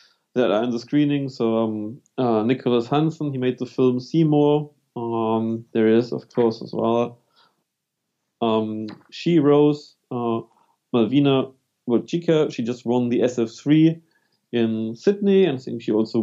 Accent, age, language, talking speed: German, 30-49, English, 150 wpm